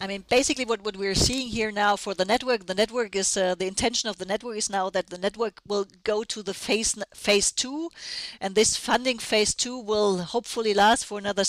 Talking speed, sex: 225 wpm, female